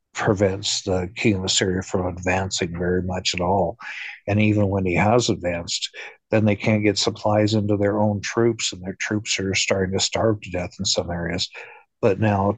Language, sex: English, male